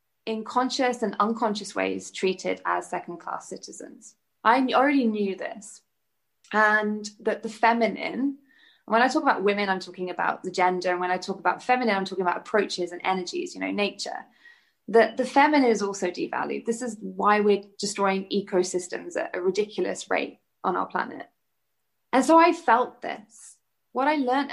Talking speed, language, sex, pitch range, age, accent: 170 wpm, English, female, 195-235 Hz, 20-39, British